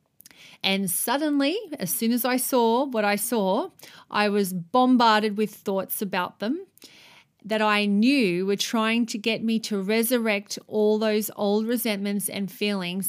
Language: English